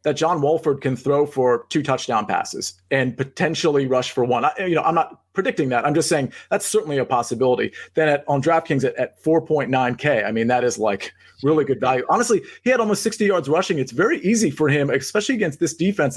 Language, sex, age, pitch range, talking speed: English, male, 30-49, 125-160 Hz, 215 wpm